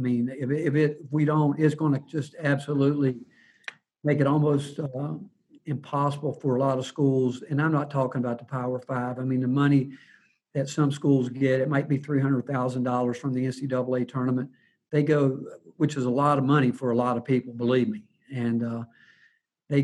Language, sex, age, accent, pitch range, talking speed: English, male, 50-69, American, 130-145 Hz, 200 wpm